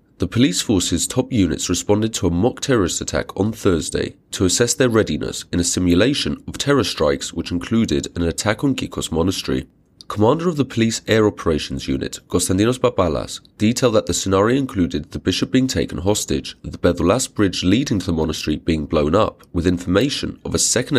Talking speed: 185 wpm